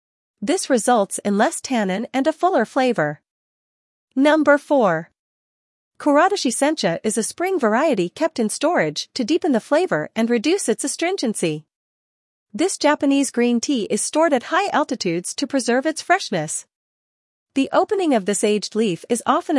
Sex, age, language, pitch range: female, 40-59, English, 215-305 Hz